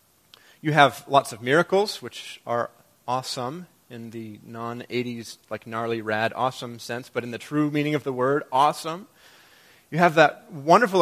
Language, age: English, 30-49